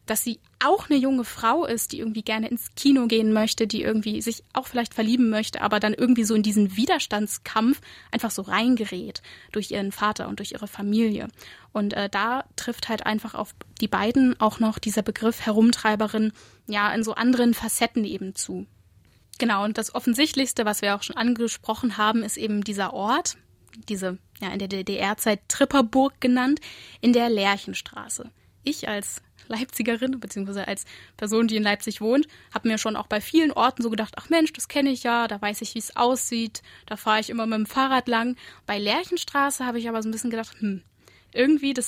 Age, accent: 10-29, German